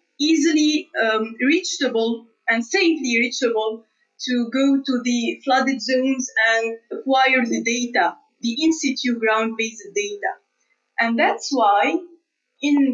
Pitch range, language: 235-300 Hz, English